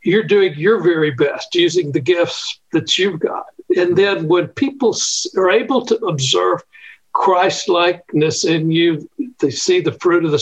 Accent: American